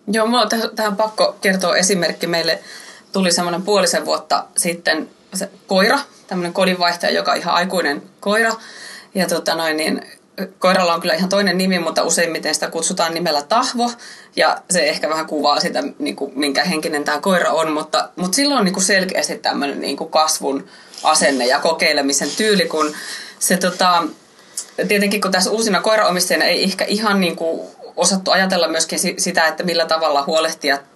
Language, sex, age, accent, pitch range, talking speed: Finnish, female, 20-39, native, 160-205 Hz, 160 wpm